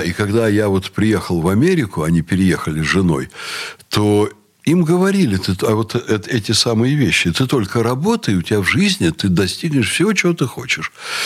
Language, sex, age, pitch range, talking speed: Russian, male, 60-79, 95-145 Hz, 160 wpm